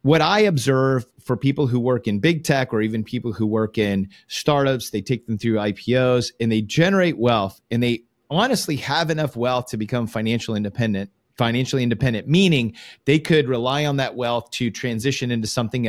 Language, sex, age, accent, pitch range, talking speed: English, male, 30-49, American, 115-140 Hz, 185 wpm